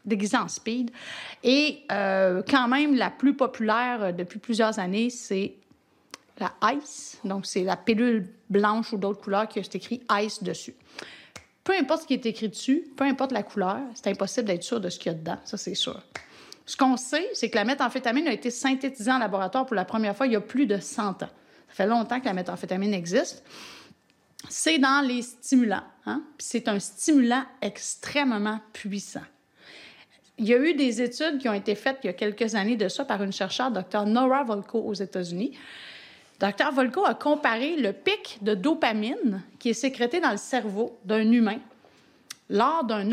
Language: French